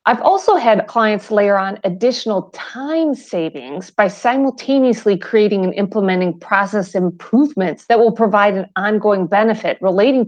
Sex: female